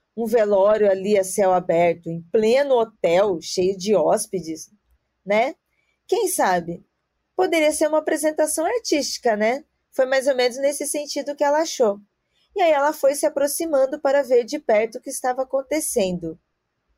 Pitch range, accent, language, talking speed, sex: 190-280 Hz, Brazilian, Portuguese, 155 wpm, female